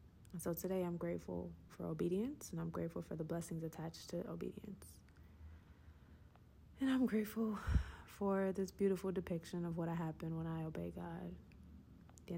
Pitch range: 165-190 Hz